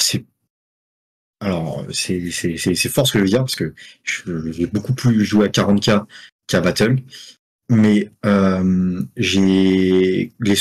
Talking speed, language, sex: 170 wpm, French, male